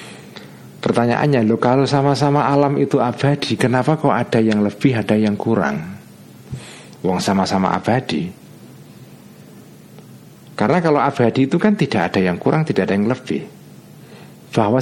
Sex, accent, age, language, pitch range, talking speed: male, native, 50-69, Indonesian, 105-145 Hz, 130 wpm